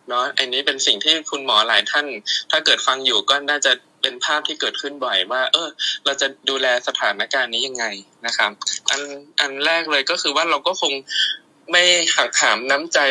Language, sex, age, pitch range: Thai, male, 20-39, 125-155 Hz